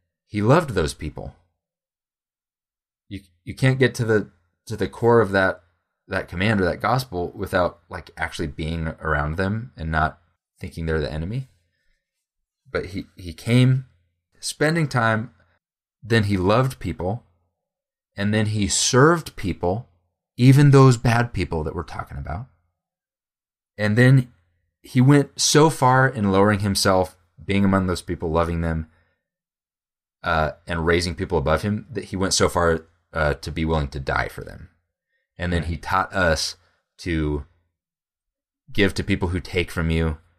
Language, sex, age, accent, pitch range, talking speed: English, male, 20-39, American, 80-105 Hz, 150 wpm